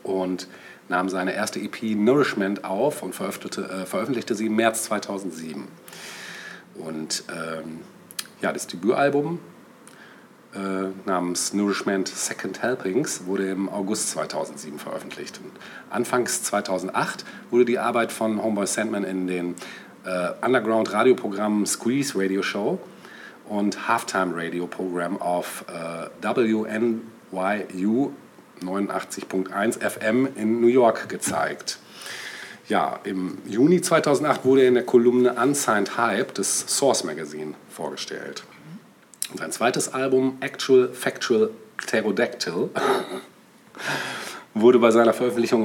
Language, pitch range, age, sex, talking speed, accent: German, 95-120 Hz, 40-59, male, 110 wpm, German